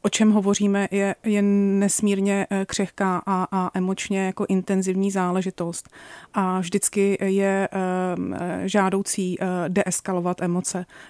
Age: 30-49